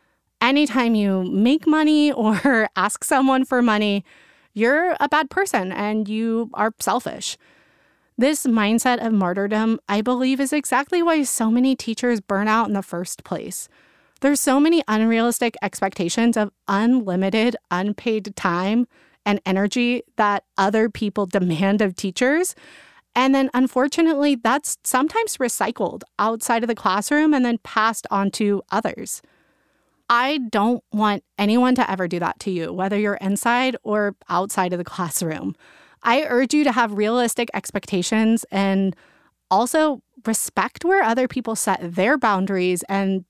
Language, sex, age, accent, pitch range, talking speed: English, female, 30-49, American, 200-255 Hz, 145 wpm